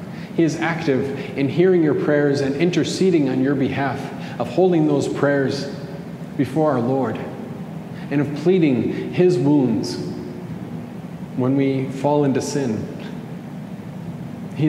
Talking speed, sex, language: 125 wpm, male, English